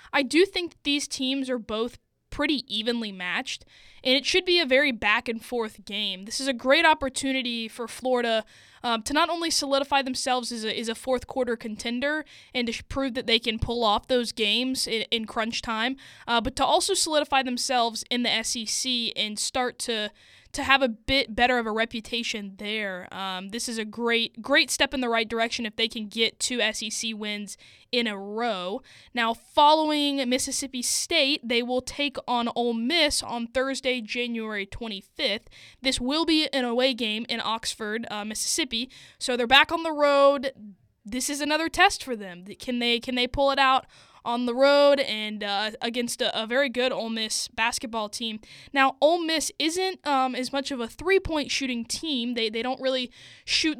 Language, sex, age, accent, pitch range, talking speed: English, female, 10-29, American, 225-275 Hz, 185 wpm